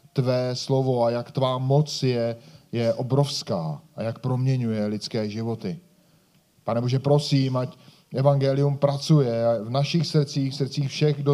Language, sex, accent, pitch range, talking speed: Czech, male, native, 120-150 Hz, 145 wpm